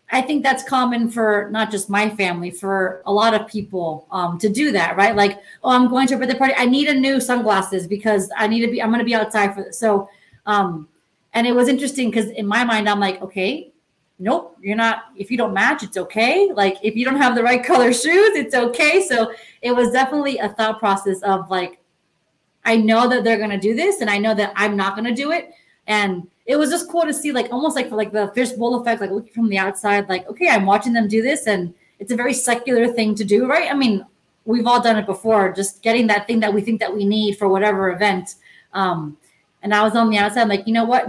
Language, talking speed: English, 250 wpm